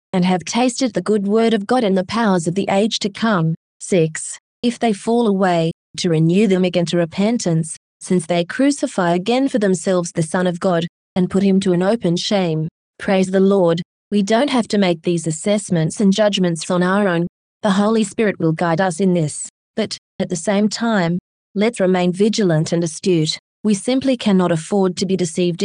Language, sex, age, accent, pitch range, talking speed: English, female, 30-49, Australian, 175-210 Hz, 195 wpm